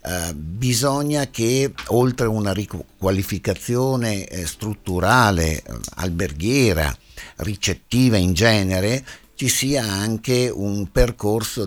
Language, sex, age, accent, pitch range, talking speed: Italian, male, 60-79, native, 95-125 Hz, 95 wpm